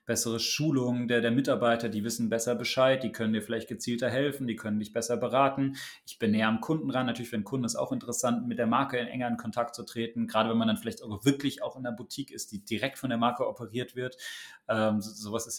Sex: male